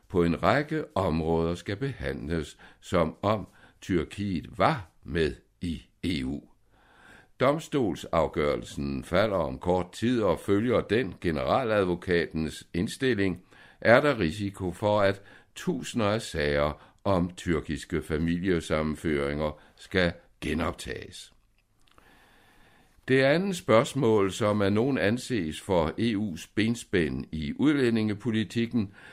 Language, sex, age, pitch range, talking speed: Danish, male, 60-79, 80-110 Hz, 100 wpm